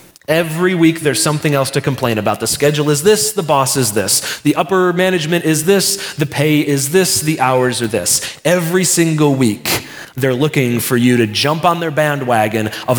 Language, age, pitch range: English, 30-49, 120-170 Hz